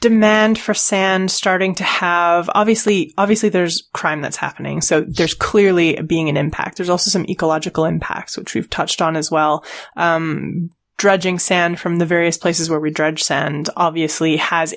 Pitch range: 160-200 Hz